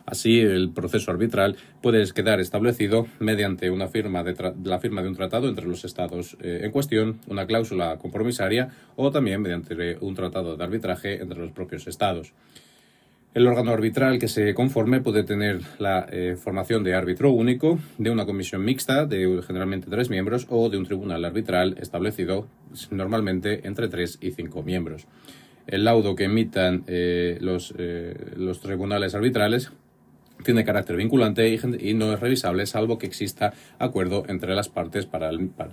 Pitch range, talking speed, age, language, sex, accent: 90-110 Hz, 155 wpm, 30-49, Spanish, male, Spanish